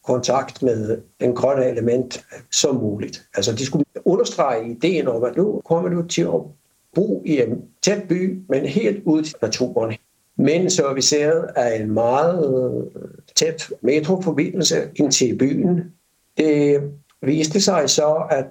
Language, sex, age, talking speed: Danish, male, 60-79, 150 wpm